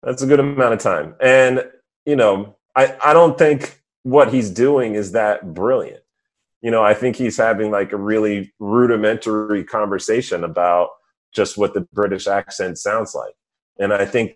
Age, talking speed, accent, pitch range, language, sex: 30-49, 170 wpm, American, 90-120 Hz, English, male